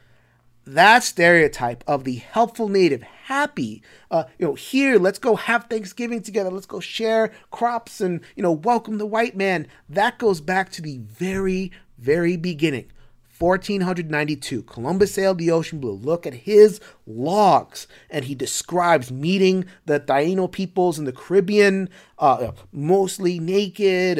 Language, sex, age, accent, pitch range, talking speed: English, male, 30-49, American, 135-195 Hz, 145 wpm